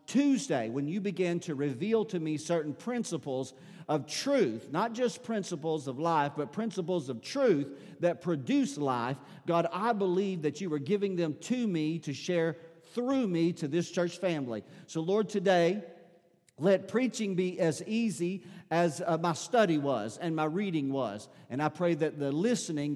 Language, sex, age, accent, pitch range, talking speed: English, male, 50-69, American, 150-190 Hz, 170 wpm